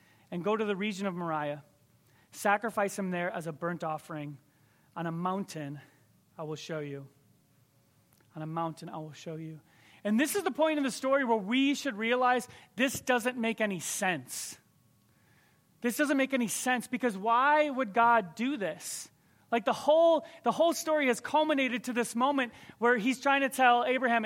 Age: 30-49